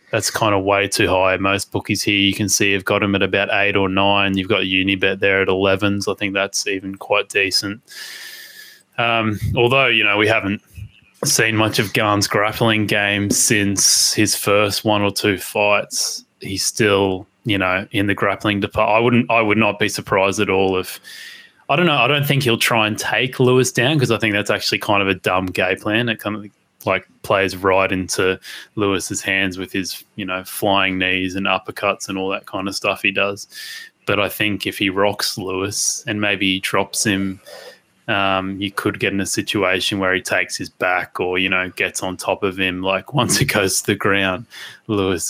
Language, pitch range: English, 95-105 Hz